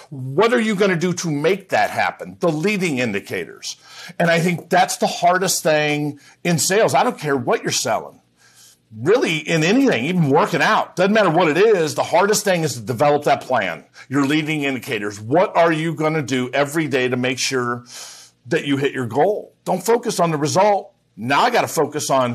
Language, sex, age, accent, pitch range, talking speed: English, male, 50-69, American, 135-175 Hz, 205 wpm